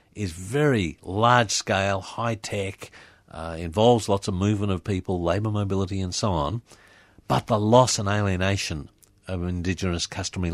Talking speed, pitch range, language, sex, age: 130 wpm, 90-120 Hz, English, male, 50-69